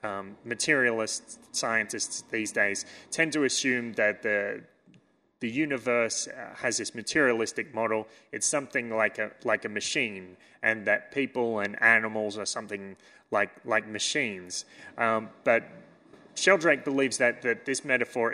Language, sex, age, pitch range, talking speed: English, male, 30-49, 105-130 Hz, 140 wpm